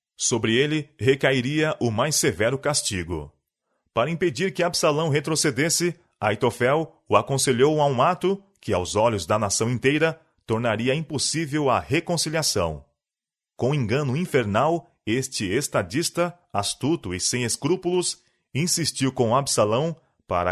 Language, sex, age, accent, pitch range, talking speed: Portuguese, male, 30-49, Brazilian, 110-155 Hz, 120 wpm